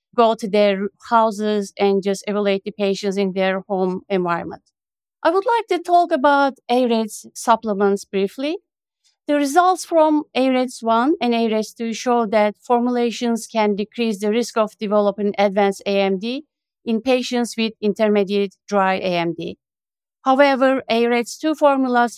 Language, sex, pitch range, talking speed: English, female, 205-265 Hz, 130 wpm